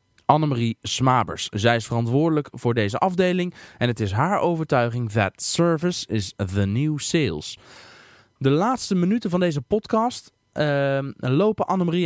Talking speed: 140 wpm